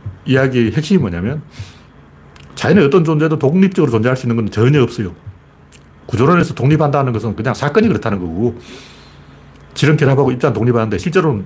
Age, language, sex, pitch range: 40-59, Korean, male, 90-150 Hz